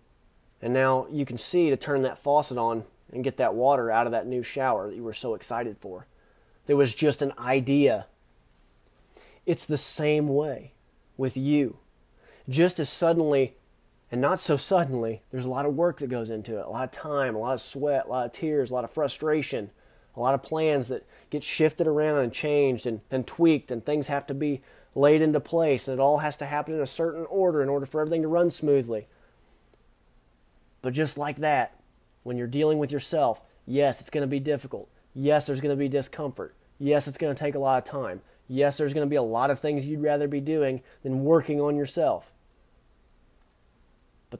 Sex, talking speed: male, 205 wpm